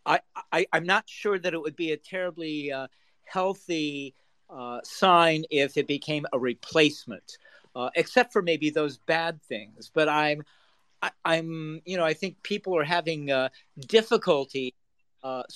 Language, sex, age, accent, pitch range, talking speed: English, male, 50-69, American, 135-170 Hz, 160 wpm